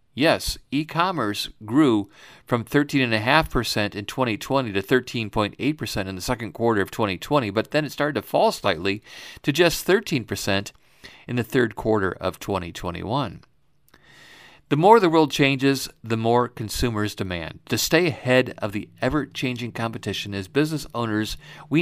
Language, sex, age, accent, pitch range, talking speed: English, male, 50-69, American, 100-130 Hz, 140 wpm